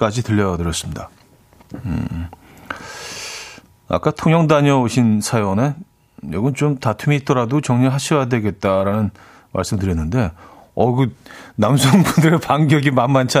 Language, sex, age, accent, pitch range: Korean, male, 40-59, native, 110-170 Hz